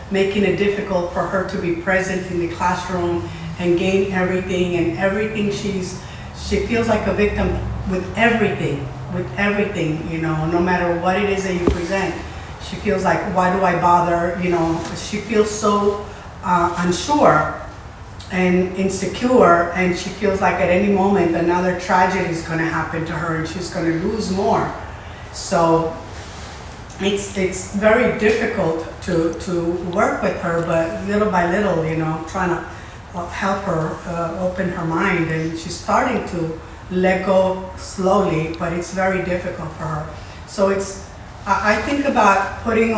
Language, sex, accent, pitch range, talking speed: English, female, American, 165-195 Hz, 160 wpm